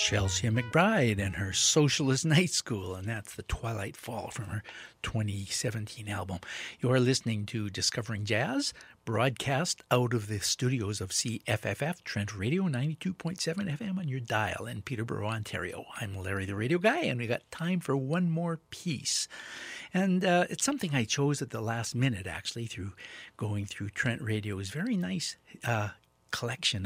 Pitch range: 105-155 Hz